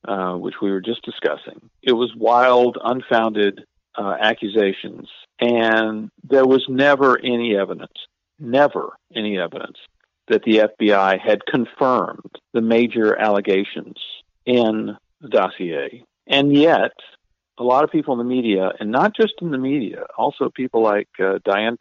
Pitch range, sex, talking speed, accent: 110-135 Hz, male, 145 wpm, American